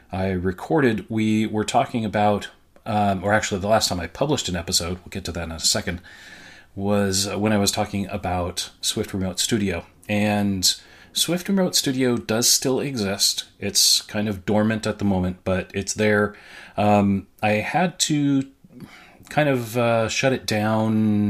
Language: English